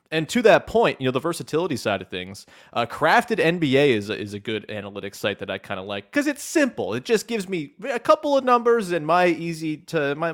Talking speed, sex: 245 wpm, male